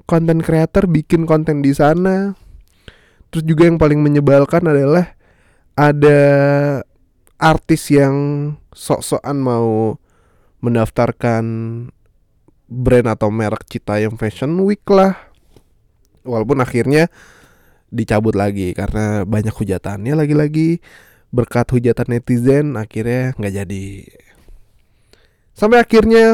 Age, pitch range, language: 20-39, 110-150 Hz, Indonesian